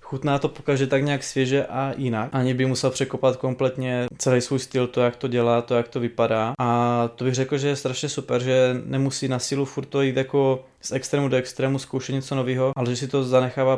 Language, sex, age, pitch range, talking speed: Czech, male, 20-39, 120-130 Hz, 225 wpm